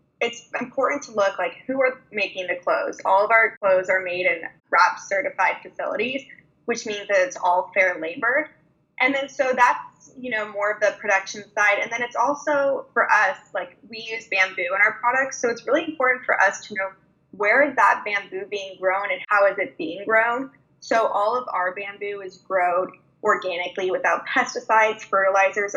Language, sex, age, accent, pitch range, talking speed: English, female, 10-29, American, 190-250 Hz, 190 wpm